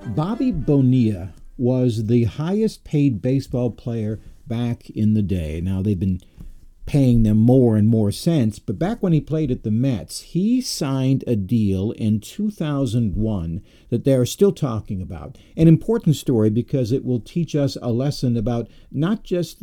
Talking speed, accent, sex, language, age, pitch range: 165 wpm, American, male, English, 50-69, 110-150 Hz